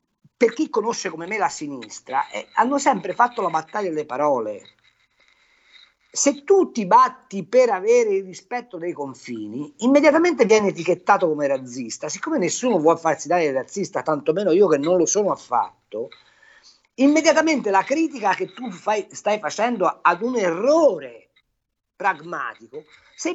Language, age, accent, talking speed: Italian, 50-69, native, 150 wpm